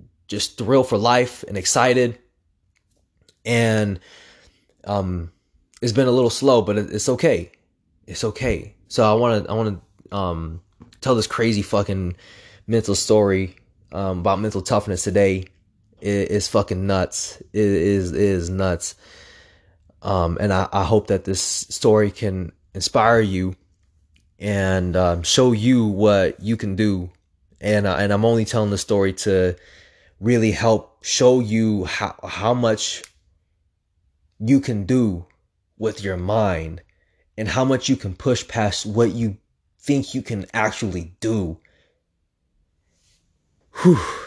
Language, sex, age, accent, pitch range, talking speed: English, male, 20-39, American, 90-110 Hz, 140 wpm